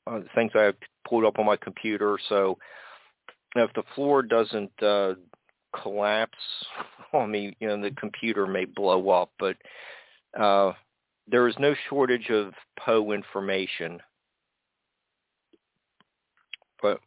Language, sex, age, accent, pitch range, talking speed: English, male, 50-69, American, 100-110 Hz, 140 wpm